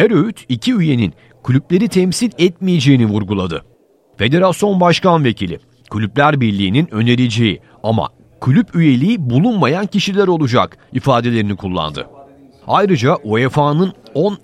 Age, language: 40-59, Turkish